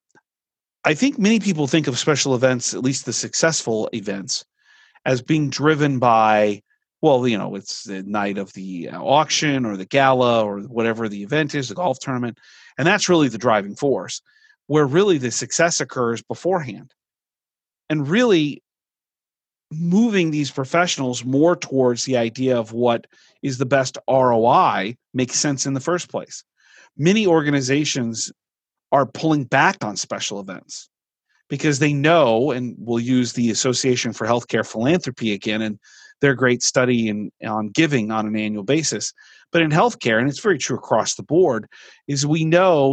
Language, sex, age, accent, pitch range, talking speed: English, male, 40-59, American, 120-155 Hz, 160 wpm